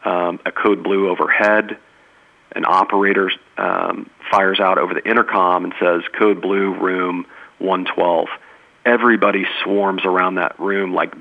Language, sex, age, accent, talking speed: English, male, 40-59, American, 135 wpm